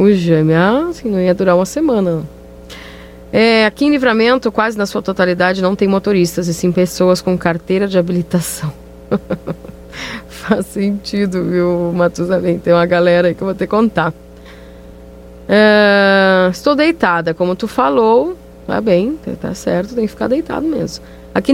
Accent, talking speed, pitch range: Brazilian, 155 wpm, 170-205 Hz